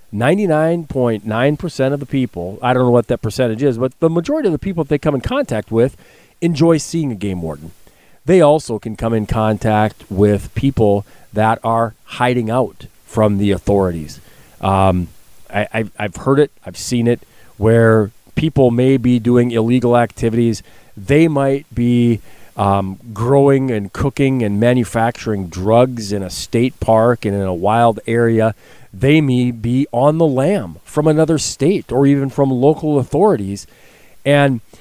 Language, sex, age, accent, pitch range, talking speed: English, male, 40-59, American, 110-140 Hz, 155 wpm